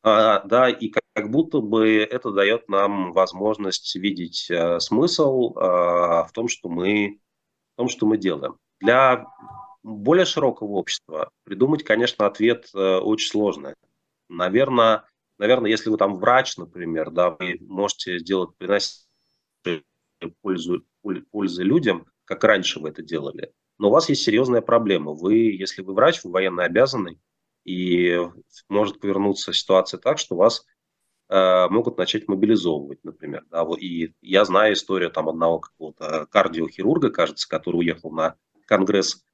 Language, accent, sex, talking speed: Russian, native, male, 135 wpm